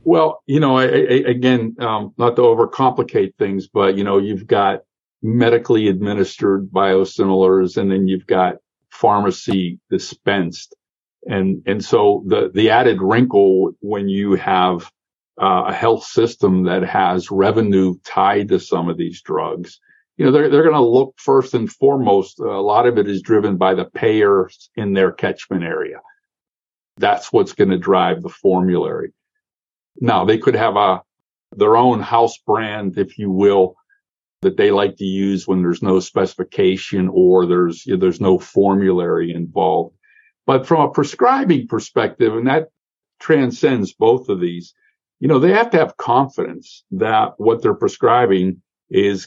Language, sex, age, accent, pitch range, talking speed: English, male, 50-69, American, 95-130 Hz, 155 wpm